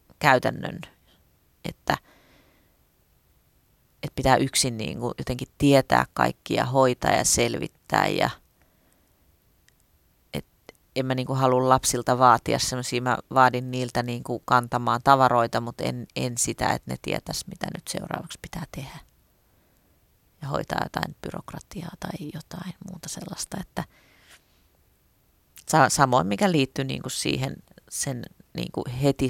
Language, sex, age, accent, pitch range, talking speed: Finnish, female, 30-49, native, 120-150 Hz, 100 wpm